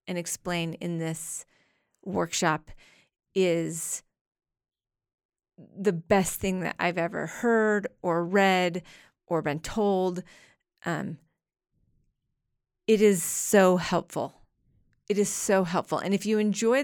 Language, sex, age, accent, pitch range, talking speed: English, female, 30-49, American, 175-210 Hz, 110 wpm